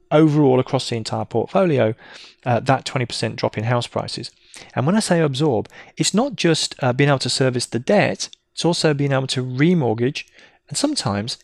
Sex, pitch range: male, 115-155 Hz